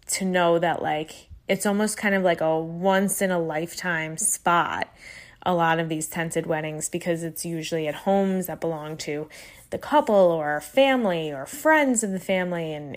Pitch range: 165-205 Hz